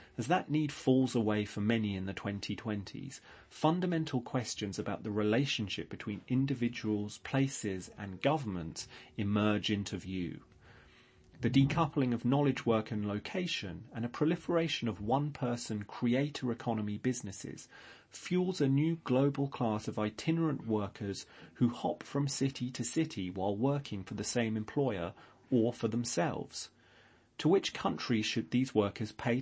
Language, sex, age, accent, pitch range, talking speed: English, male, 30-49, British, 105-135 Hz, 140 wpm